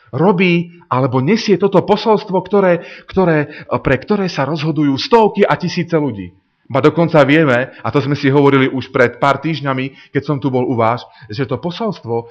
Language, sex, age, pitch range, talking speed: Slovak, male, 30-49, 120-170 Hz, 175 wpm